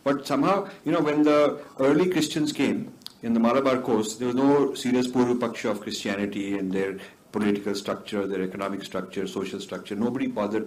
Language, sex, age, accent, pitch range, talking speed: English, male, 50-69, Indian, 125-200 Hz, 175 wpm